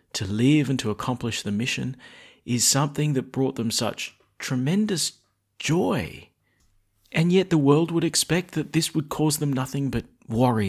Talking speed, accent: 165 wpm, Australian